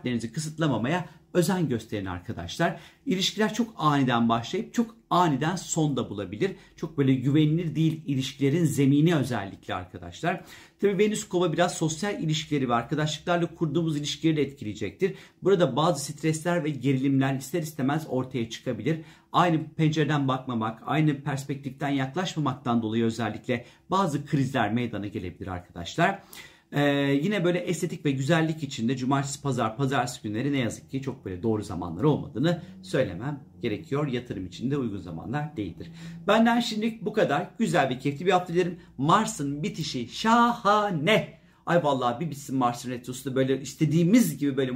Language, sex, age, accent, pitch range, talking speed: Turkish, male, 50-69, native, 130-175 Hz, 140 wpm